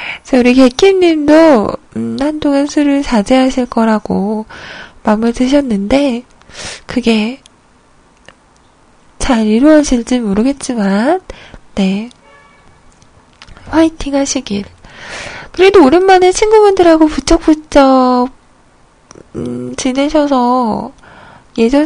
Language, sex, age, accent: Korean, female, 20-39, native